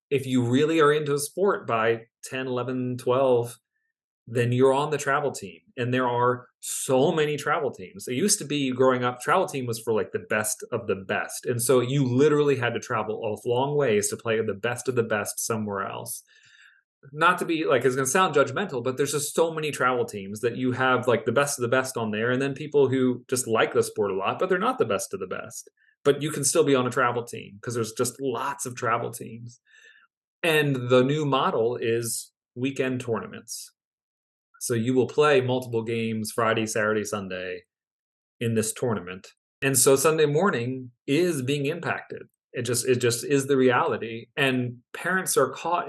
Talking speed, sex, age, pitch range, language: 205 wpm, male, 30-49, 120-150 Hz, English